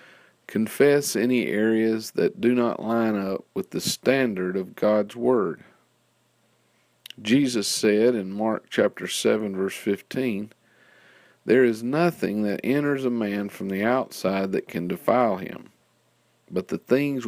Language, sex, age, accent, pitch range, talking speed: English, male, 50-69, American, 95-120 Hz, 135 wpm